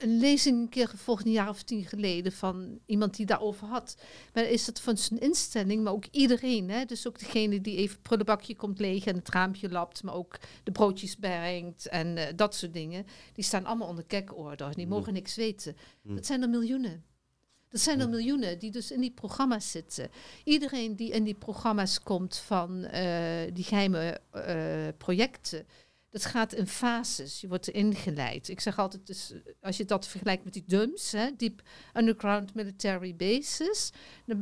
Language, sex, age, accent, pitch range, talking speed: Dutch, female, 50-69, Dutch, 190-230 Hz, 185 wpm